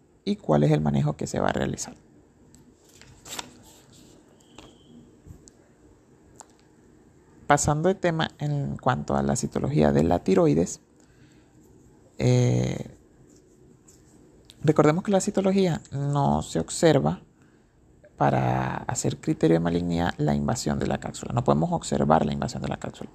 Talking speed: 120 wpm